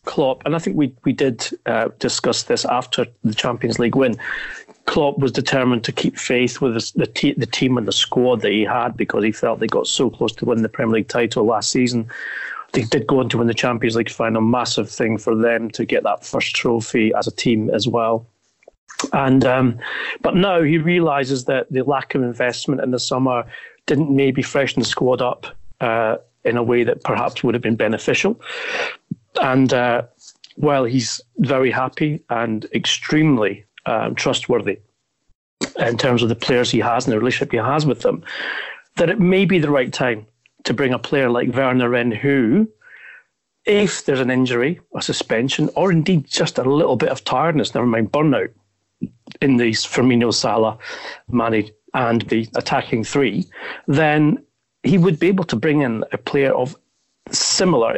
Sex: male